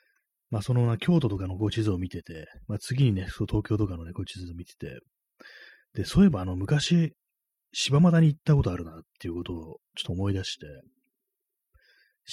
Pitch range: 90-140 Hz